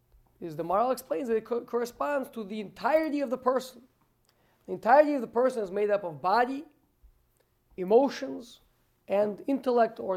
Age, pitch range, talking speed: 40-59, 180-250 Hz, 165 wpm